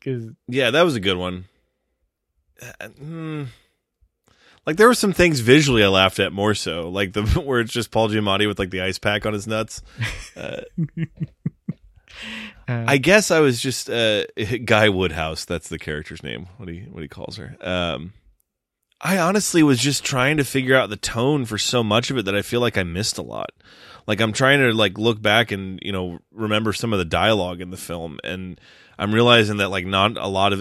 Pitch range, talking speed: 90-120 Hz, 200 wpm